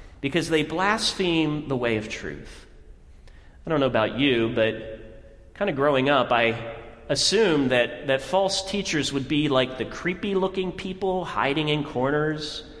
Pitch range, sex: 130-165 Hz, male